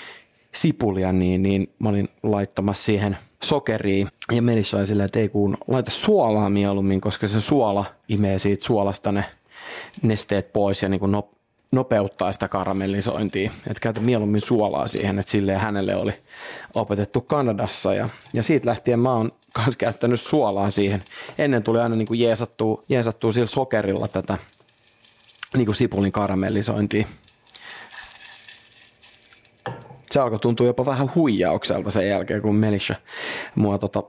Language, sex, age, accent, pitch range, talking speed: Finnish, male, 30-49, native, 100-120 Hz, 140 wpm